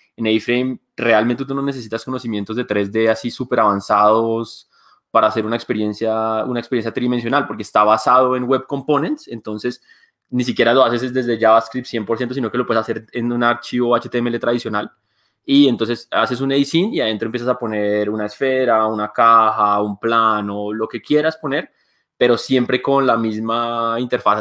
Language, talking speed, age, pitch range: Spanish, 170 wpm, 20-39, 110-130 Hz